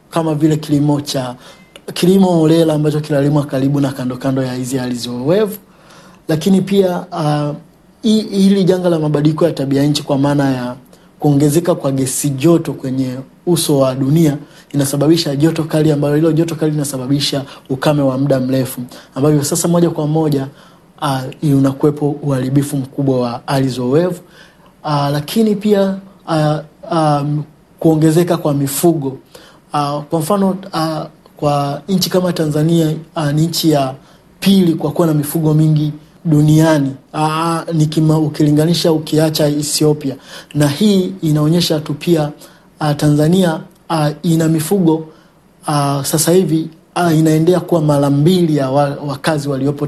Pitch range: 145-170 Hz